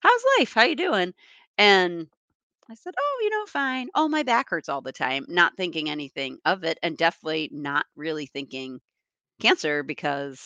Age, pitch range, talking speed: 40-59, 135-185 Hz, 180 wpm